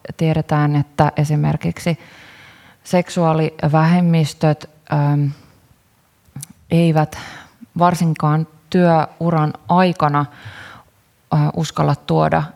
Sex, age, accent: female, 20-39, native